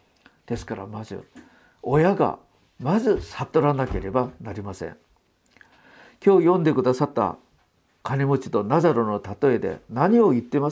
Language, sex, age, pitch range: Japanese, male, 50-69, 120-205 Hz